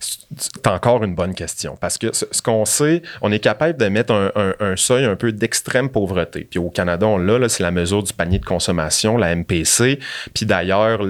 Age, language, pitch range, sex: 30-49, French, 90-110 Hz, male